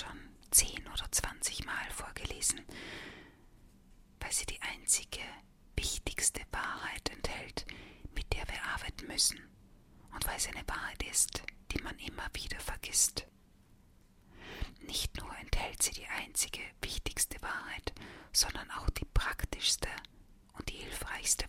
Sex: female